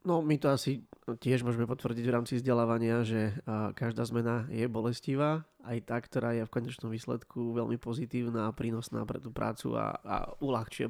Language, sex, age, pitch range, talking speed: Slovak, male, 20-39, 115-130 Hz, 170 wpm